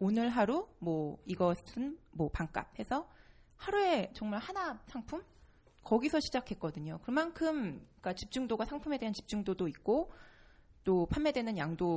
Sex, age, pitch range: female, 20-39, 170-245 Hz